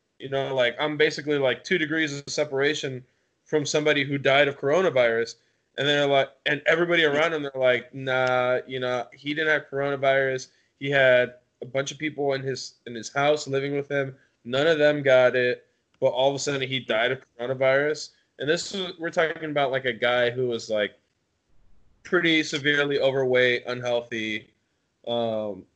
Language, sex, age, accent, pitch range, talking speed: English, male, 20-39, American, 120-145 Hz, 175 wpm